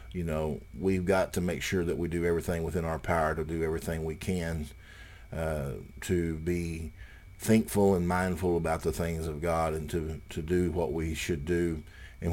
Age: 50-69